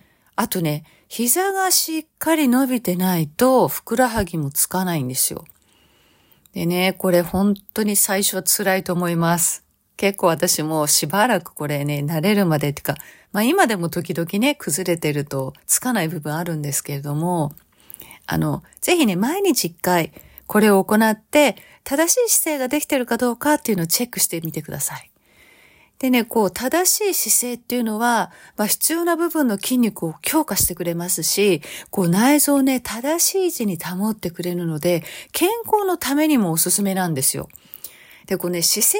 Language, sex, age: Japanese, female, 40-59